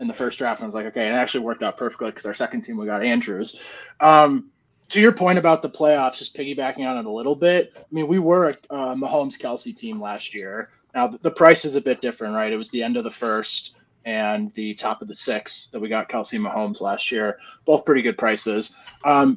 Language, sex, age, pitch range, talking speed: English, male, 20-39, 125-205 Hz, 240 wpm